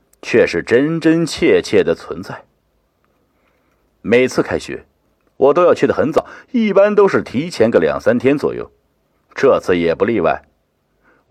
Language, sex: Chinese, male